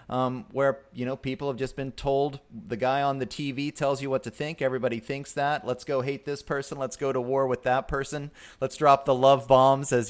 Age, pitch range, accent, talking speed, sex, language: 30-49, 125-160 Hz, American, 240 wpm, male, English